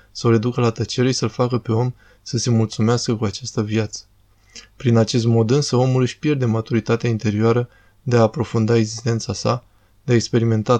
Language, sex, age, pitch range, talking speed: Romanian, male, 20-39, 110-125 Hz, 185 wpm